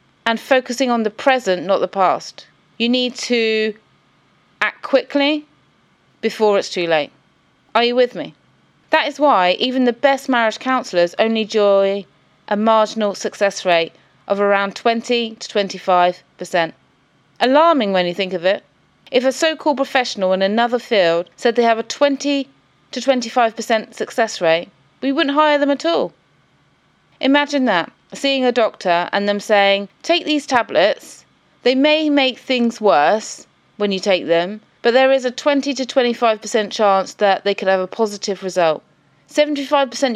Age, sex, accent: 30-49, female, British